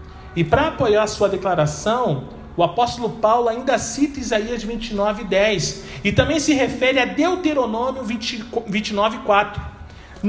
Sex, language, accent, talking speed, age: male, Portuguese, Brazilian, 115 wpm, 40-59